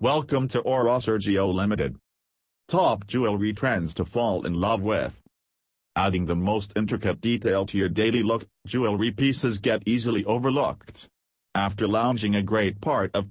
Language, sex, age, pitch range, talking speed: English, male, 40-59, 95-115 Hz, 150 wpm